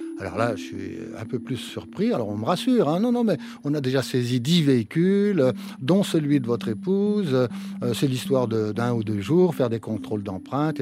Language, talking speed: French, 215 wpm